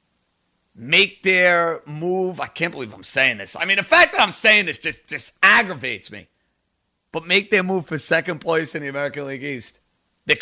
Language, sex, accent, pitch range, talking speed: English, male, American, 150-195 Hz, 195 wpm